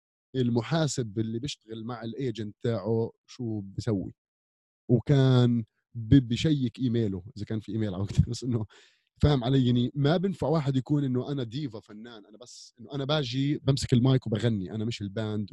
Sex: male